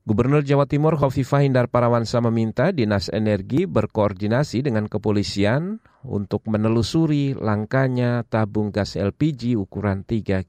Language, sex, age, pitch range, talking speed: Indonesian, male, 40-59, 105-130 Hz, 115 wpm